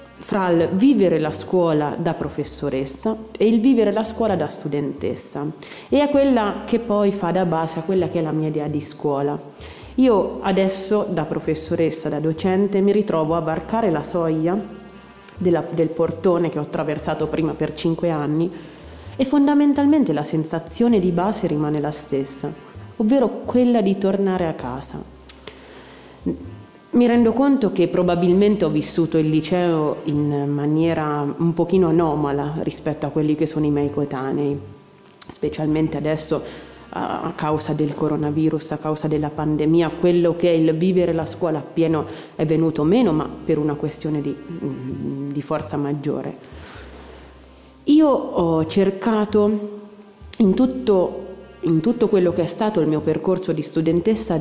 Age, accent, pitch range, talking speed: 30-49, native, 150-195 Hz, 150 wpm